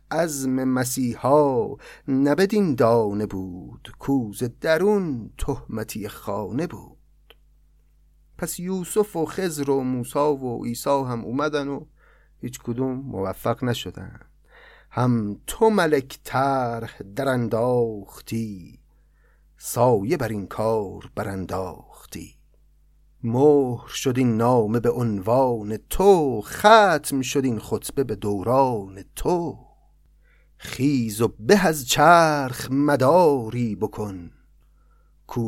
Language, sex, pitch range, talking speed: Persian, male, 115-165 Hz, 95 wpm